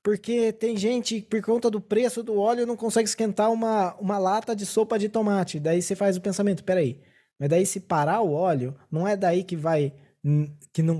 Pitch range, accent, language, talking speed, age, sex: 145-195 Hz, Brazilian, Portuguese, 205 wpm, 20-39, male